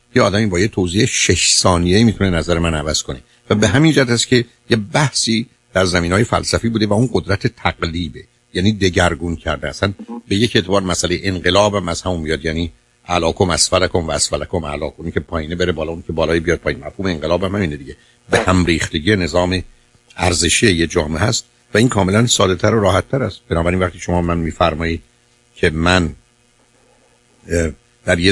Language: Persian